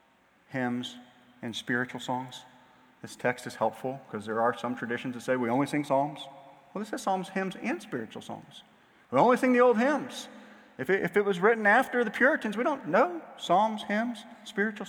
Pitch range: 140-225 Hz